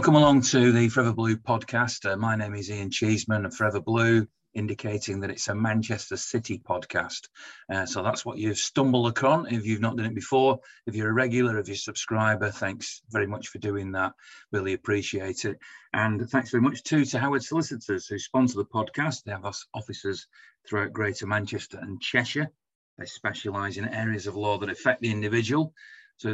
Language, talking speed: English, 195 wpm